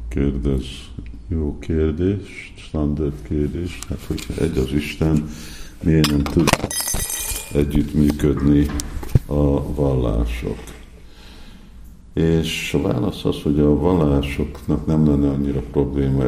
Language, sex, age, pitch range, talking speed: Hungarian, male, 50-69, 70-75 Hz, 100 wpm